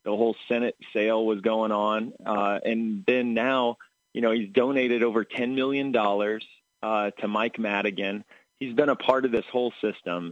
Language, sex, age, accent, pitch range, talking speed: English, male, 30-49, American, 100-120 Hz, 175 wpm